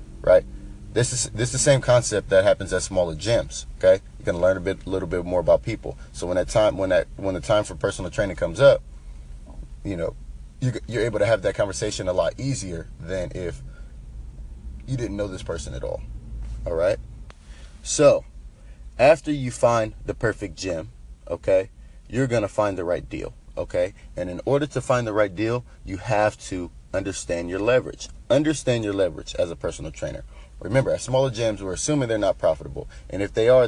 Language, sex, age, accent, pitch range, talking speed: English, male, 30-49, American, 70-110 Hz, 200 wpm